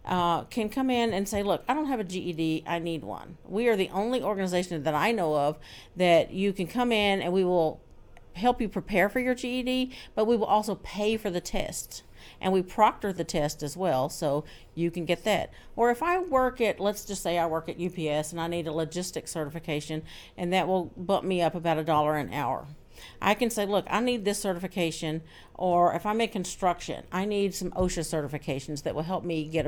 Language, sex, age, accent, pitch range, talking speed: English, female, 50-69, American, 160-210 Hz, 220 wpm